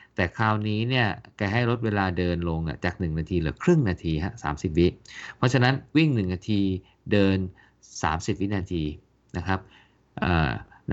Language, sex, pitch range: Thai, male, 90-115 Hz